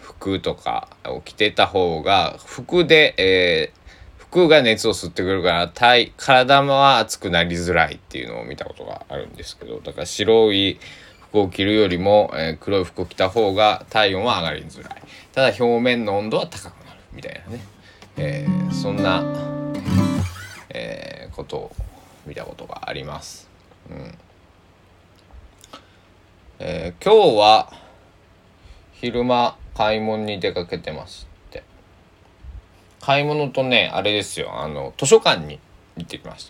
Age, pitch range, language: 20-39, 85-120 Hz, Japanese